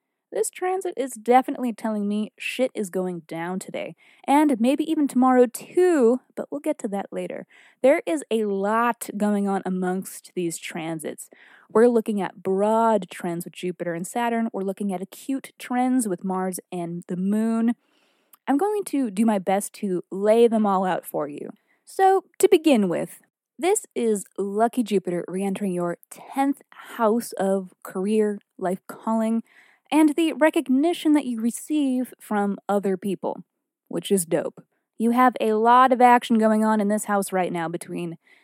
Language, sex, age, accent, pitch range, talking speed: English, female, 20-39, American, 195-275 Hz, 160 wpm